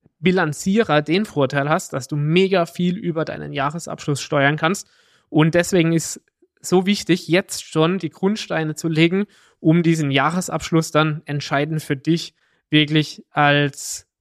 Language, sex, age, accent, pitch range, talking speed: German, male, 20-39, German, 150-180 Hz, 140 wpm